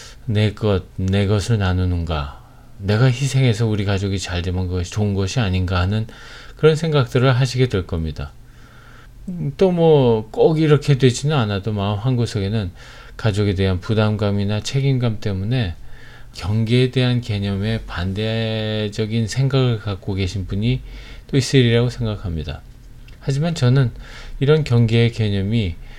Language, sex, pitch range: Korean, male, 100-120 Hz